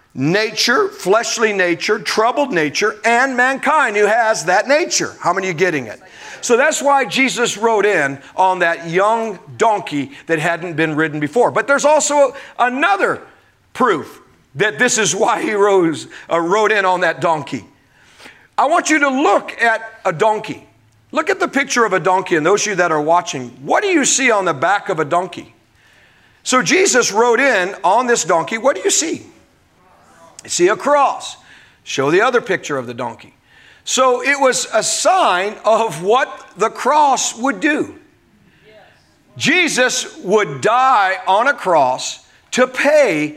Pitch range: 175-275 Hz